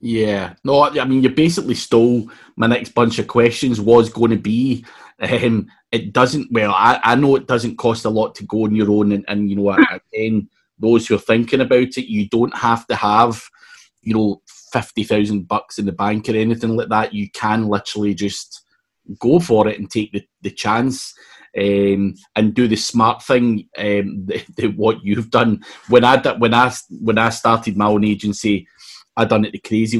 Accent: British